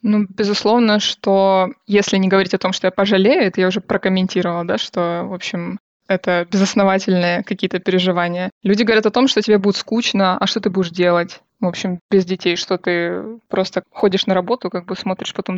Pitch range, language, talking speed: 185-220 Hz, Russian, 195 wpm